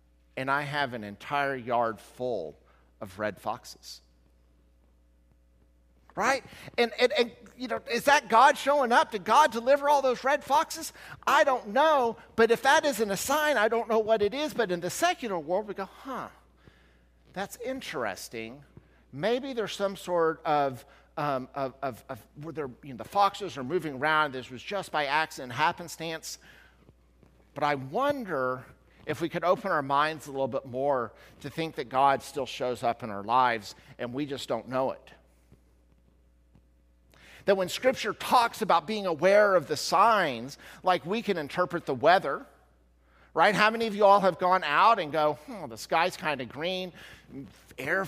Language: English